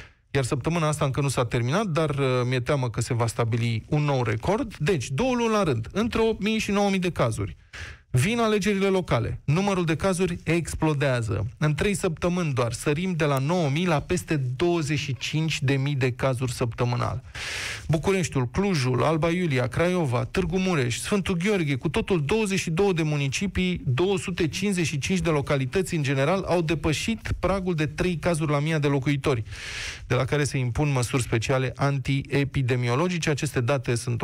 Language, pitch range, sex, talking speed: Romanian, 130-170 Hz, male, 160 wpm